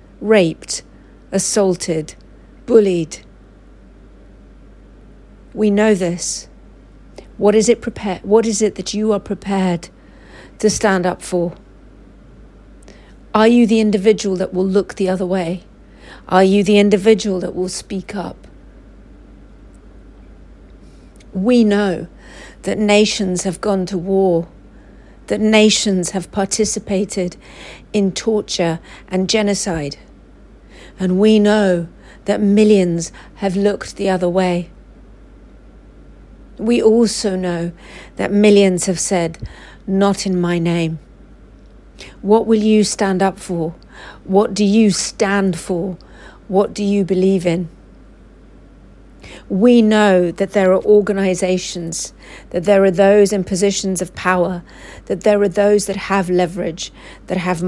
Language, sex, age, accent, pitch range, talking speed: English, female, 50-69, British, 180-210 Hz, 120 wpm